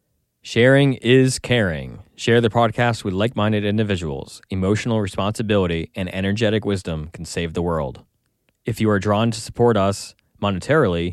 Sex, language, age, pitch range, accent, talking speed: male, English, 20-39, 90-115 Hz, American, 140 wpm